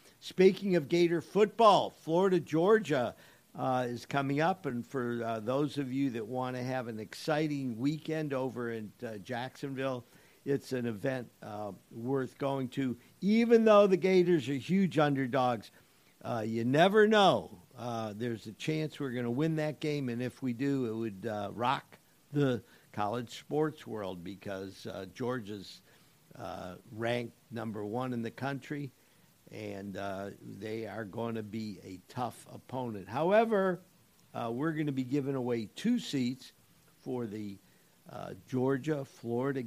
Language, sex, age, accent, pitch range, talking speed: English, male, 50-69, American, 115-145 Hz, 150 wpm